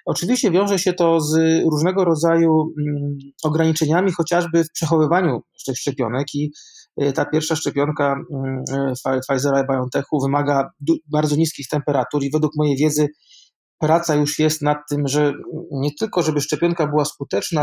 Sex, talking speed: male, 135 wpm